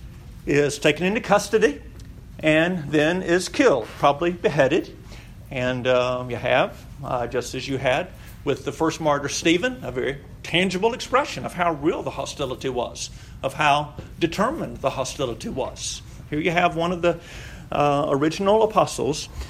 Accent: American